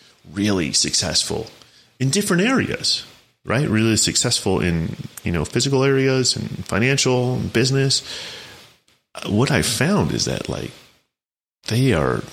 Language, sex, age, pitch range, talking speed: English, male, 30-49, 85-110 Hz, 120 wpm